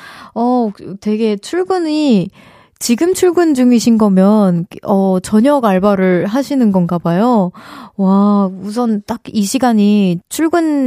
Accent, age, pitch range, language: native, 20-39, 195-260 Hz, Korean